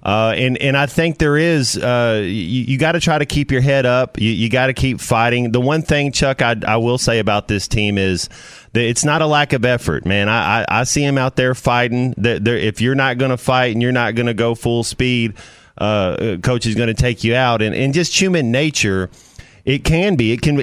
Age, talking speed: 30-49, 245 wpm